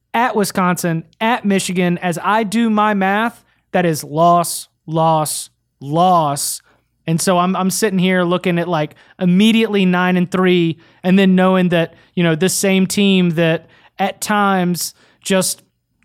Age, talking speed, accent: 30-49, 150 wpm, American